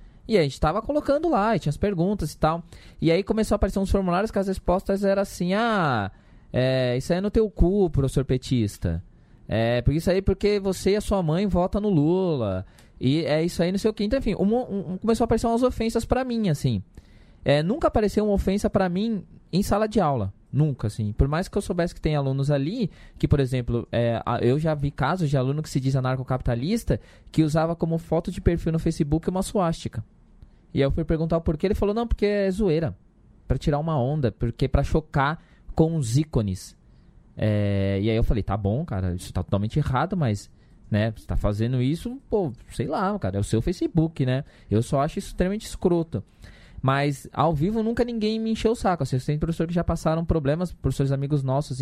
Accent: Brazilian